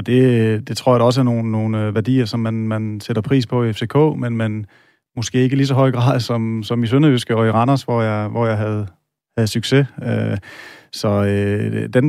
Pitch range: 110-130 Hz